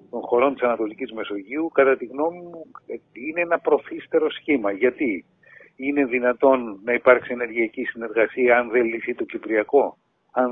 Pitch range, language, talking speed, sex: 120-185 Hz, Greek, 150 wpm, male